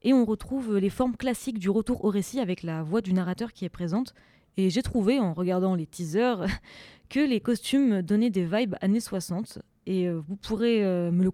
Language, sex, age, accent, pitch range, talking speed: French, female, 20-39, French, 190-240 Hz, 200 wpm